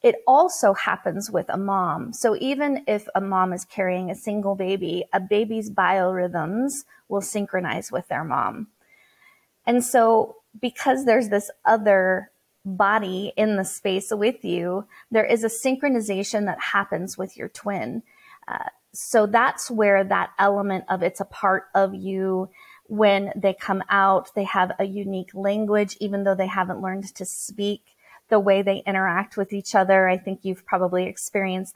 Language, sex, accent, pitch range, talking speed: English, female, American, 190-225 Hz, 160 wpm